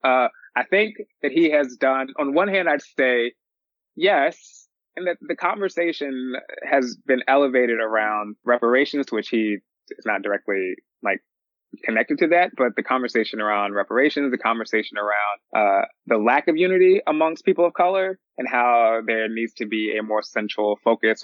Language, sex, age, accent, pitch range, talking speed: English, male, 20-39, American, 110-150 Hz, 165 wpm